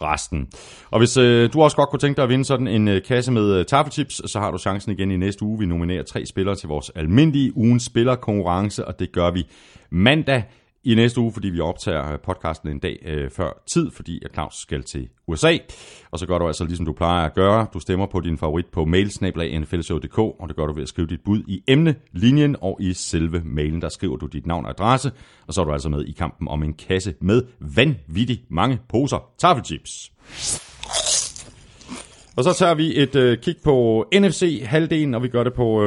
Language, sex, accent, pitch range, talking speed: Danish, male, native, 85-120 Hz, 215 wpm